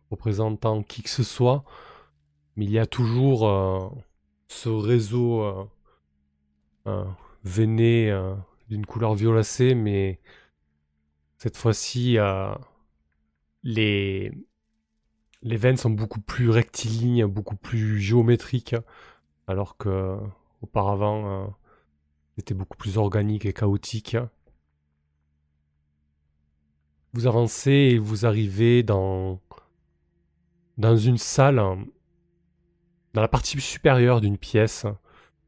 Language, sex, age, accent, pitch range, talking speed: French, male, 20-39, French, 80-120 Hz, 100 wpm